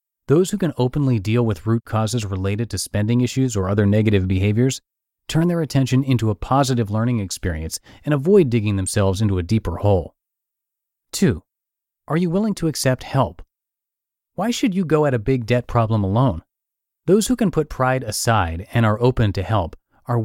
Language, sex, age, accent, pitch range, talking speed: English, male, 30-49, American, 100-135 Hz, 180 wpm